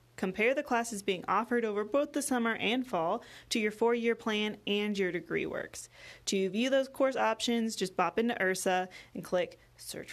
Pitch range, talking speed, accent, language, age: 190-235 Hz, 185 wpm, American, English, 20-39